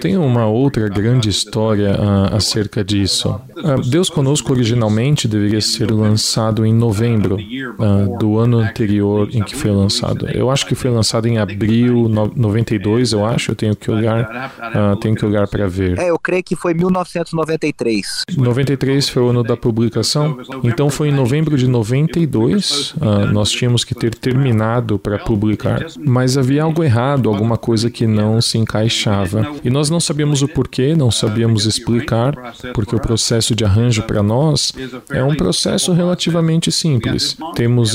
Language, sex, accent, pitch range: Portuguese, male, Brazilian, 110-140 Hz